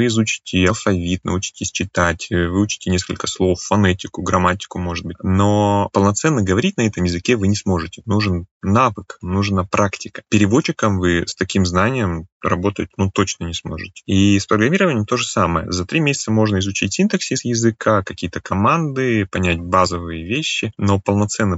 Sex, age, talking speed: male, 20-39, 155 wpm